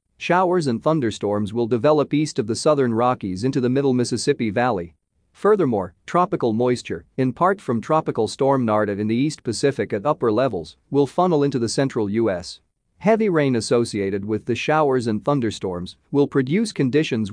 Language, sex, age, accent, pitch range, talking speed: English, male, 40-59, American, 110-145 Hz, 165 wpm